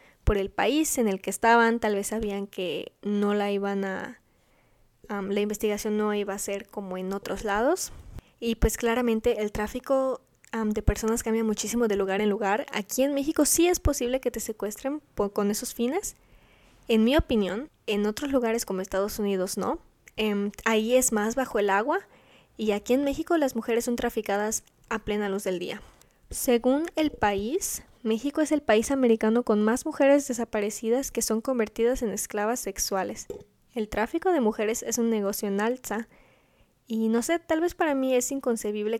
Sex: female